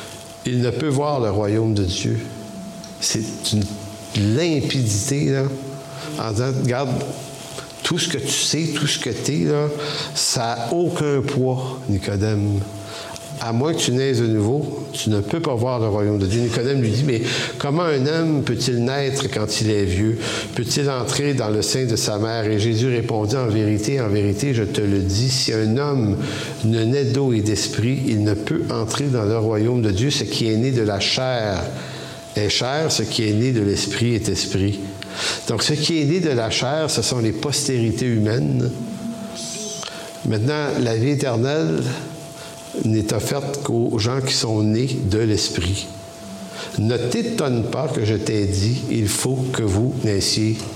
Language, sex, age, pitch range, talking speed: English, male, 60-79, 110-140 Hz, 185 wpm